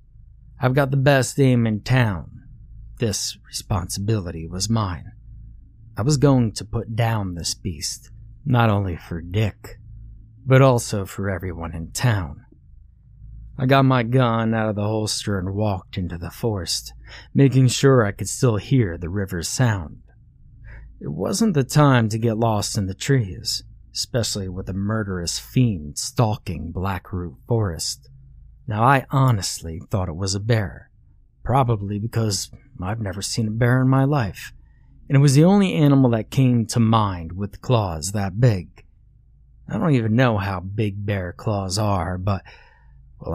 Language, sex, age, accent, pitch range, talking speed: English, male, 30-49, American, 95-120 Hz, 155 wpm